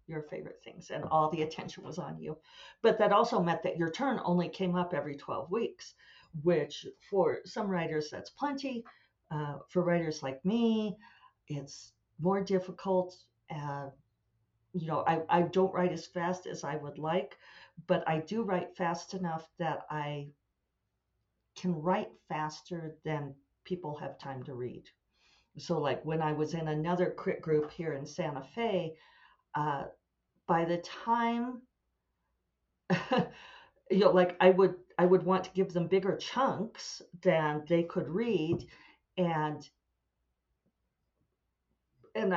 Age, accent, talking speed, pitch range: 50-69, American, 145 wpm, 155-185 Hz